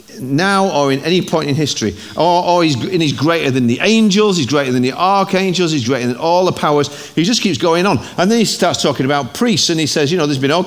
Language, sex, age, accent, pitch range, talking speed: English, male, 50-69, British, 135-185 Hz, 260 wpm